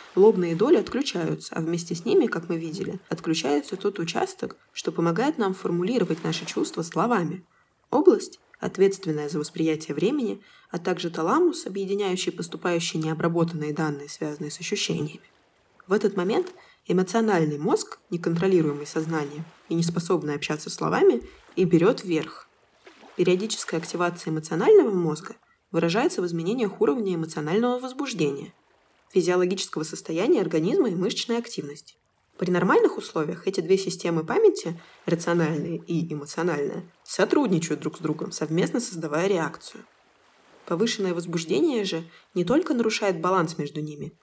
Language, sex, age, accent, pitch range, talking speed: Russian, female, 20-39, native, 165-210 Hz, 125 wpm